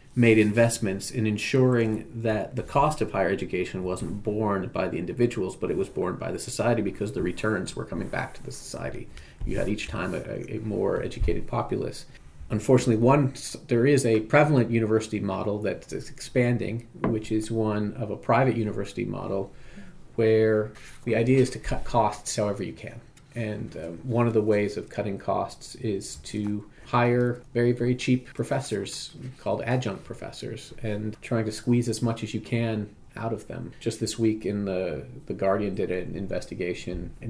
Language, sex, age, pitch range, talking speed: English, male, 40-59, 105-120 Hz, 180 wpm